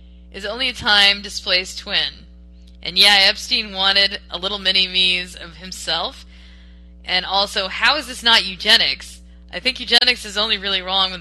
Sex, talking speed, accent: female, 165 wpm, American